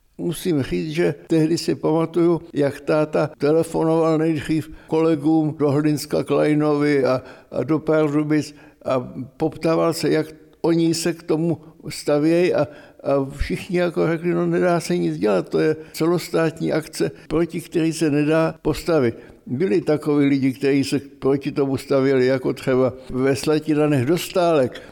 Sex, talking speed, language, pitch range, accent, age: male, 140 wpm, Czech, 130-155 Hz, native, 60-79